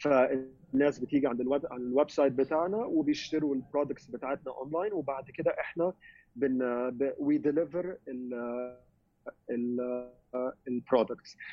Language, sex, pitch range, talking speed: Arabic, male, 130-155 Hz, 95 wpm